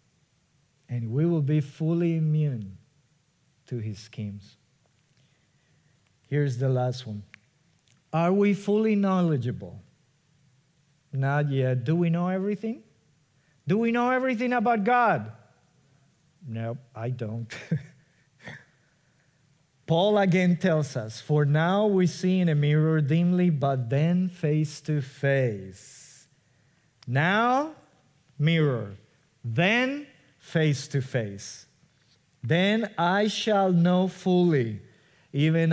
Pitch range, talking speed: 135-175 Hz, 105 wpm